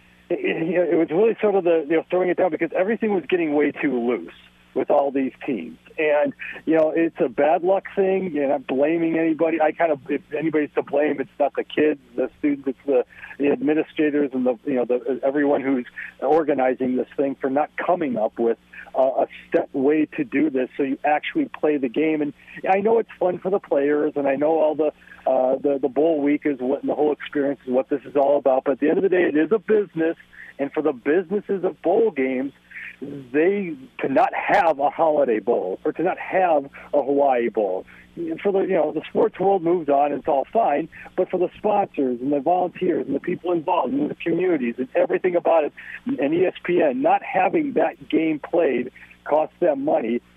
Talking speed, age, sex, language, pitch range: 220 wpm, 40-59, male, English, 140-180 Hz